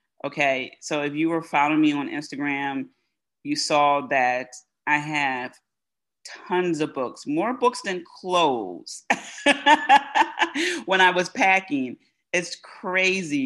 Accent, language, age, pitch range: American, English, 30-49, 145-220 Hz